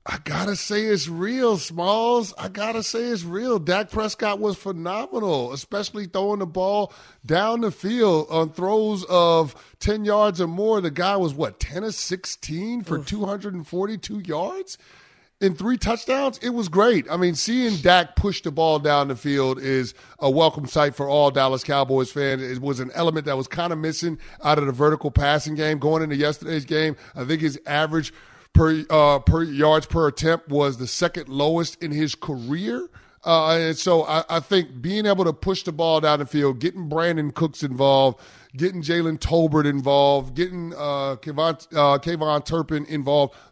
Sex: male